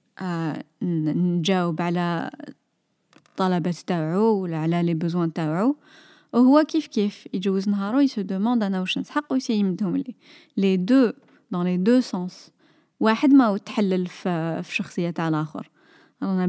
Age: 20-39